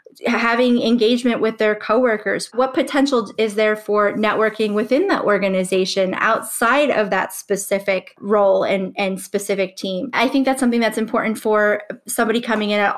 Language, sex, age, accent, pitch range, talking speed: English, female, 20-39, American, 200-240 Hz, 155 wpm